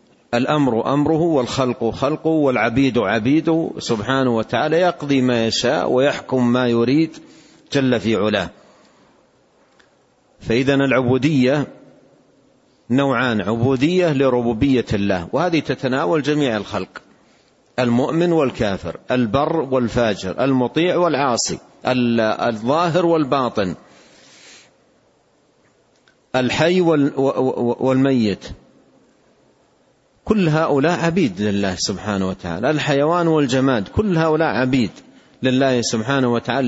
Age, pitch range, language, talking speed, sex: 50-69, 120-145 Hz, Arabic, 85 wpm, male